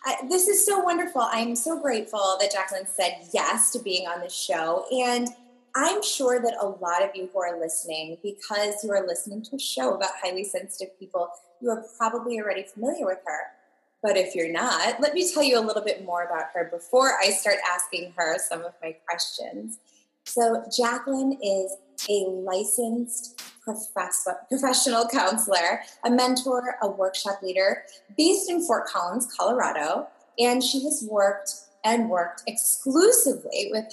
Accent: American